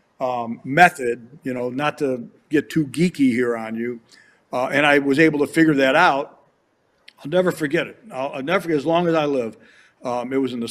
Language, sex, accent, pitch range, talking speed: English, male, American, 140-180 Hz, 220 wpm